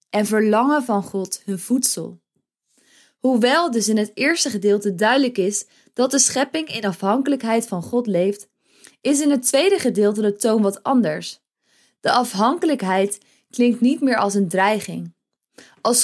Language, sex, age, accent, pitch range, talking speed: Dutch, female, 20-39, Dutch, 200-255 Hz, 150 wpm